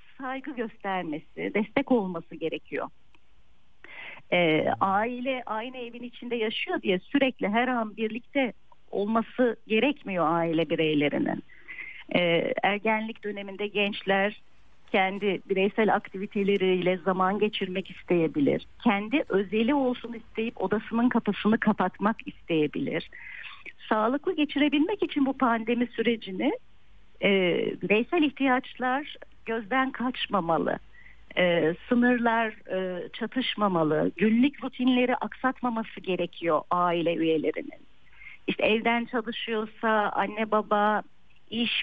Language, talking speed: Turkish, 95 wpm